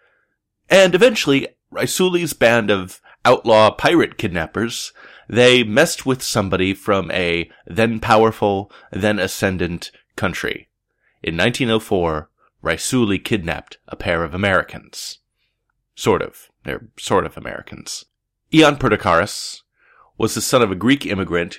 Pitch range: 90-120 Hz